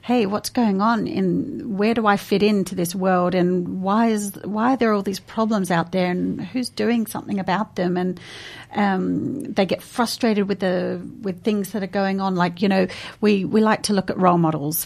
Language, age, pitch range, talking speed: English, 40-59, 180-210 Hz, 215 wpm